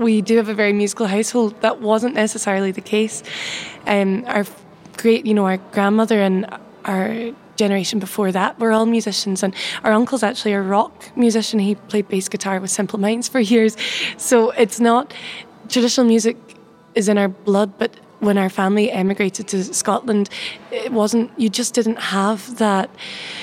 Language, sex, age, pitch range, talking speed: English, female, 20-39, 200-225 Hz, 170 wpm